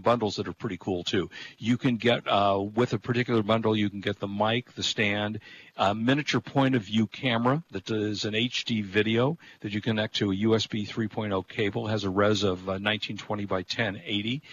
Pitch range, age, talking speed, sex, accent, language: 105-125 Hz, 50-69, 200 wpm, male, American, English